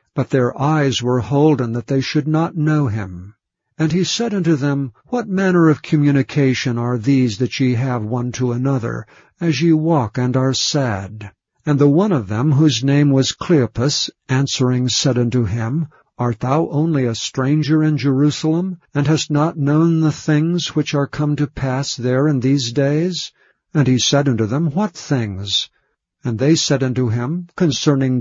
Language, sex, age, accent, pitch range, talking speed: English, male, 60-79, American, 125-155 Hz, 175 wpm